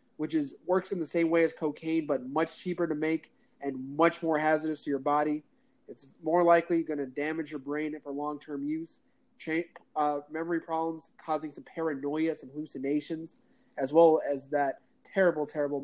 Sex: male